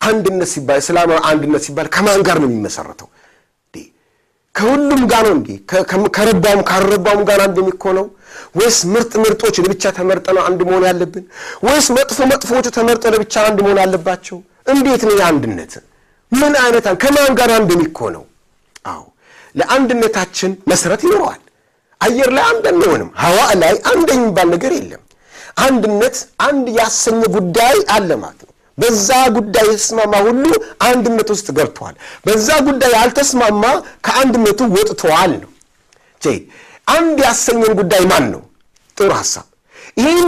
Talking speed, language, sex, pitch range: 115 wpm, Amharic, male, 190-255 Hz